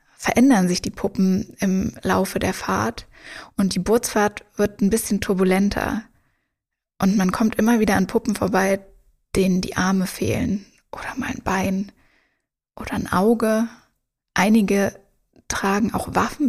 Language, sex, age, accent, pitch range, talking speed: English, female, 20-39, German, 195-225 Hz, 140 wpm